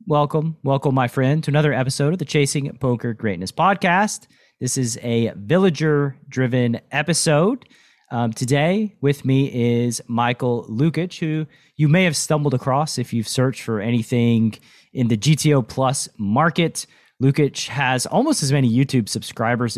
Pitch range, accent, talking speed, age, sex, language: 115-150 Hz, American, 145 wpm, 30-49, male, English